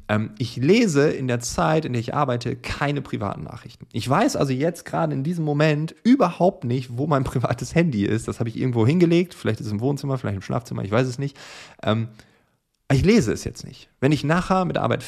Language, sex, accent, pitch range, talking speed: German, male, German, 105-140 Hz, 220 wpm